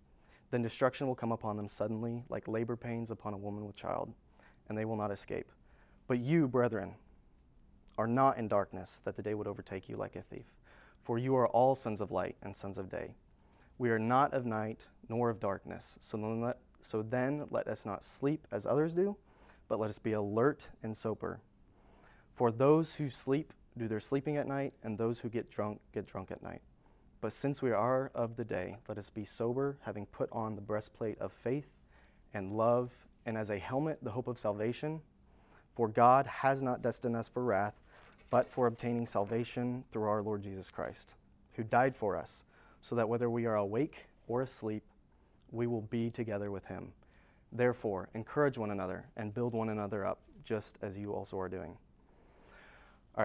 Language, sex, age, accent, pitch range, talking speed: English, male, 30-49, American, 105-125 Hz, 190 wpm